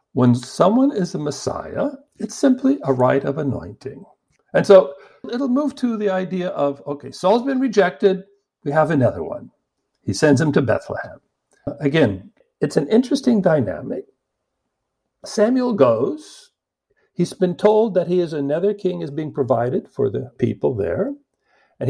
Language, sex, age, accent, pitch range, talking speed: English, male, 60-79, American, 130-210 Hz, 150 wpm